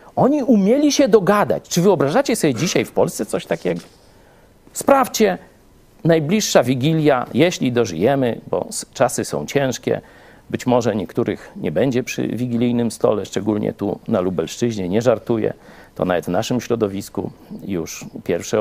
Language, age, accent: Polish, 50-69, native